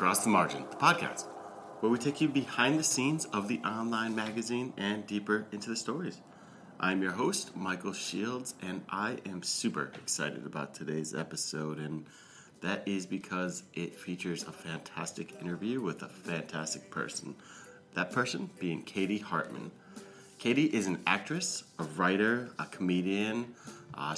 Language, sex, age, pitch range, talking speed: English, male, 30-49, 80-95 Hz, 150 wpm